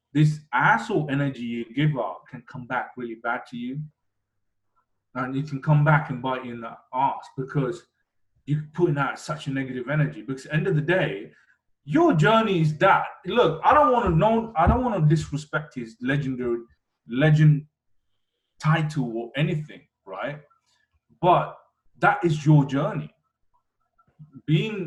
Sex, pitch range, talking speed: male, 130-155 Hz, 160 wpm